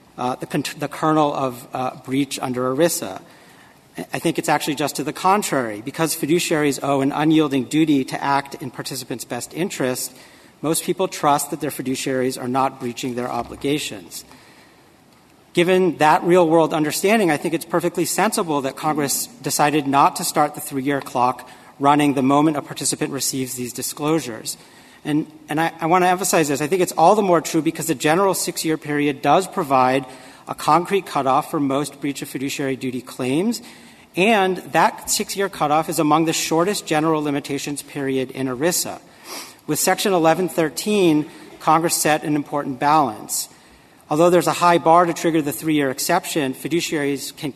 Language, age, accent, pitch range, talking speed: English, 40-59, American, 135-165 Hz, 165 wpm